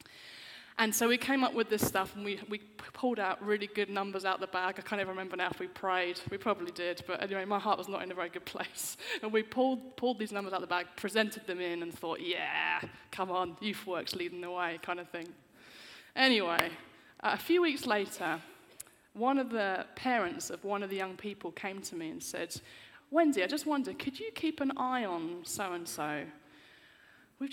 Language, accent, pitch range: English, British, 185-255 Hz